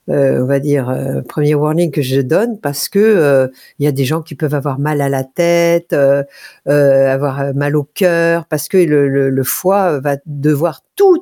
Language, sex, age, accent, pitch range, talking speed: French, female, 50-69, French, 145-185 Hz, 210 wpm